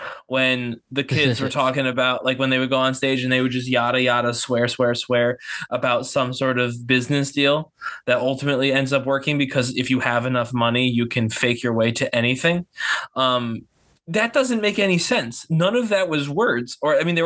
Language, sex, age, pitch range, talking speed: English, male, 20-39, 125-165 Hz, 210 wpm